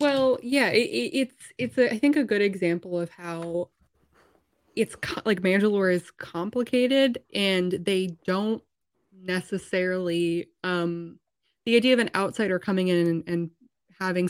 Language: English